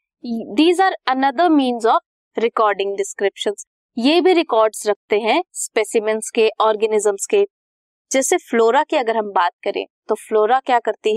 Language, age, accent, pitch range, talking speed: Hindi, 20-39, native, 210-310 Hz, 145 wpm